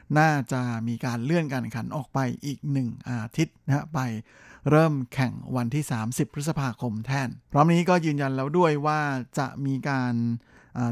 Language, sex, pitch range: Thai, male, 125-150 Hz